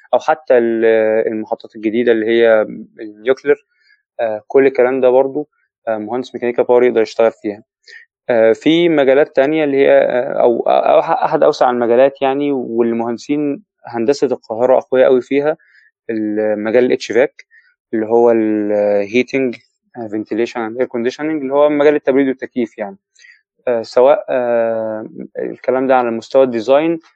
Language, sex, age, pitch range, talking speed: Arabic, male, 20-39, 110-145 Hz, 120 wpm